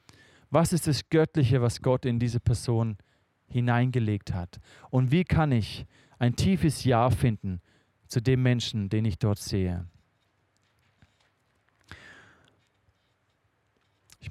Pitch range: 115-155 Hz